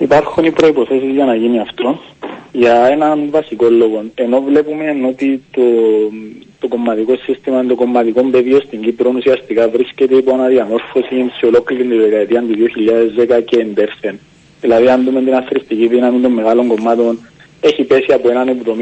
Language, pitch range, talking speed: Greek, 120-145 Hz, 165 wpm